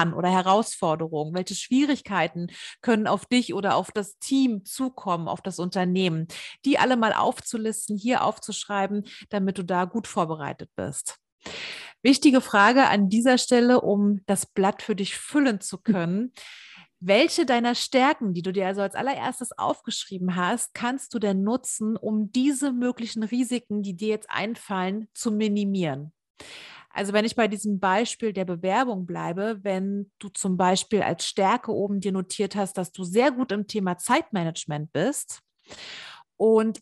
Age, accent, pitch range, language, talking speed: 30-49, German, 190-235 Hz, German, 150 wpm